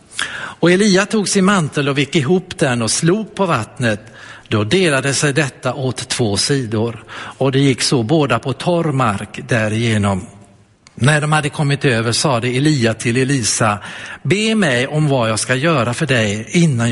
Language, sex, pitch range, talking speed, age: Swedish, male, 115-150 Hz, 175 wpm, 60-79